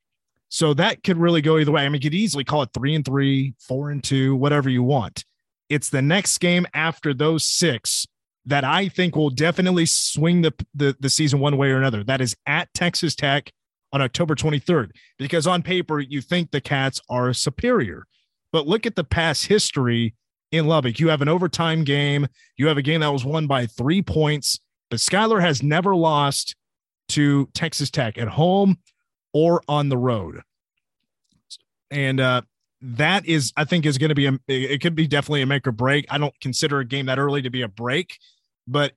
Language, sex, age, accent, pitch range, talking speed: English, male, 30-49, American, 125-155 Hz, 200 wpm